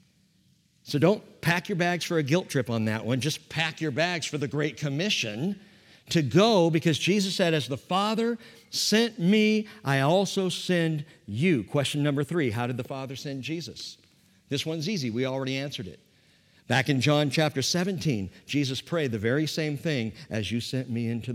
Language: English